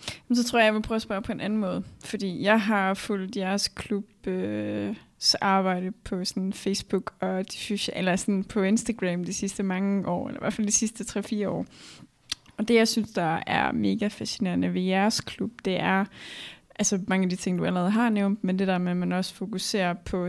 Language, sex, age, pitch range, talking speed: Danish, female, 20-39, 185-215 Hz, 210 wpm